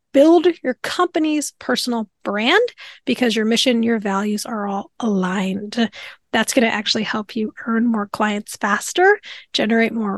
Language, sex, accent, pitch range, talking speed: English, female, American, 225-320 Hz, 145 wpm